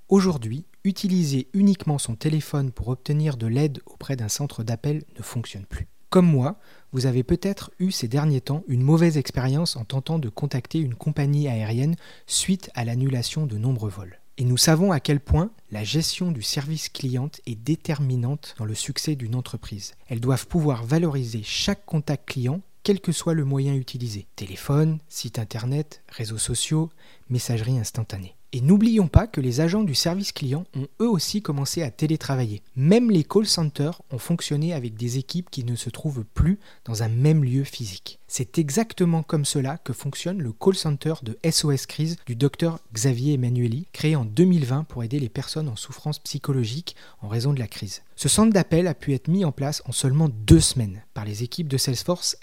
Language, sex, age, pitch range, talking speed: French, male, 30-49, 120-160 Hz, 185 wpm